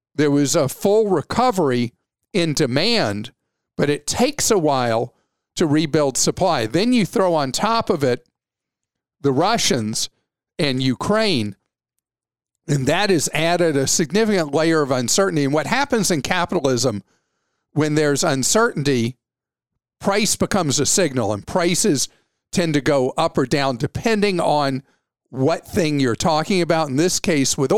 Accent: American